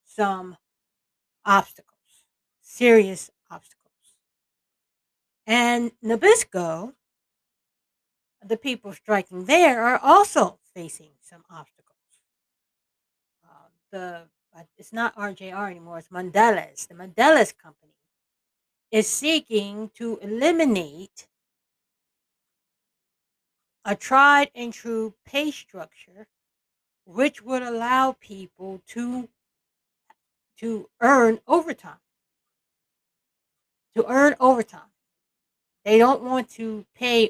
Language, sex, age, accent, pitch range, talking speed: English, female, 60-79, American, 190-250 Hz, 85 wpm